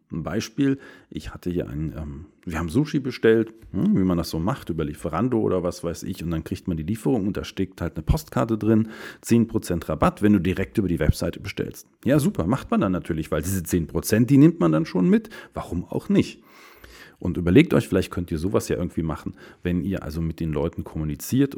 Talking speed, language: 215 wpm, German